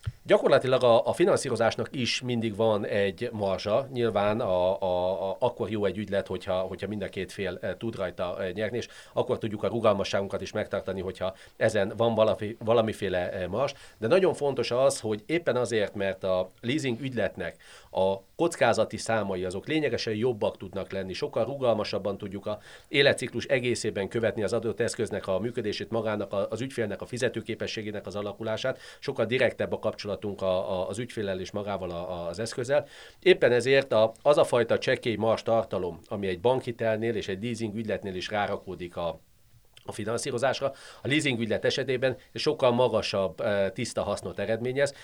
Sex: male